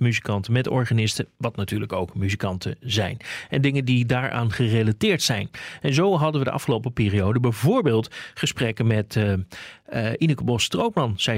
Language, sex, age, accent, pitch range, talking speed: Dutch, male, 40-59, Dutch, 110-140 Hz, 160 wpm